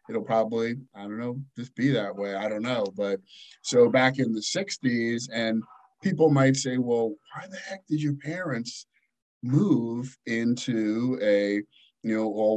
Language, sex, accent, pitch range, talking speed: English, male, American, 105-135 Hz, 160 wpm